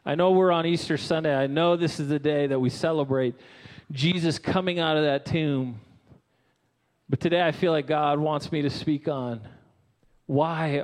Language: English